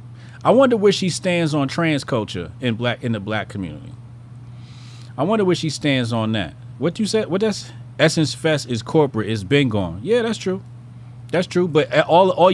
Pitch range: 120-170 Hz